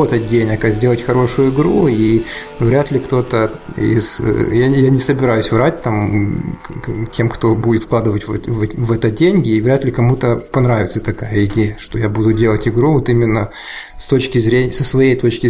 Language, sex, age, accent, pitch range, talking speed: Russian, male, 20-39, native, 110-130 Hz, 160 wpm